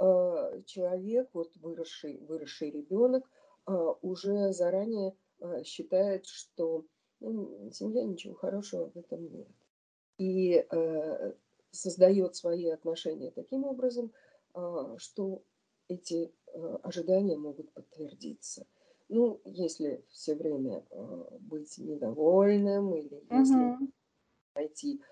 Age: 40-59